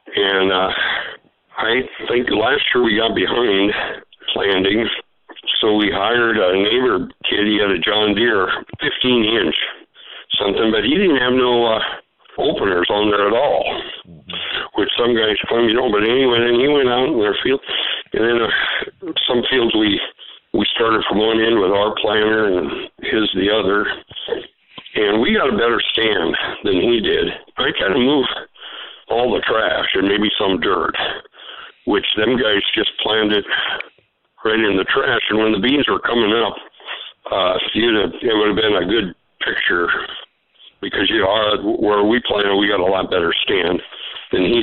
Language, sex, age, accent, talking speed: English, male, 60-79, American, 165 wpm